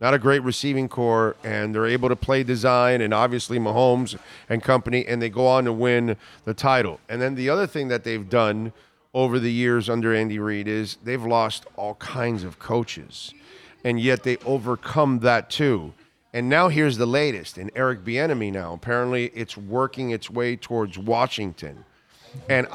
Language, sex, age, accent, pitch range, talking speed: English, male, 40-59, American, 115-145 Hz, 180 wpm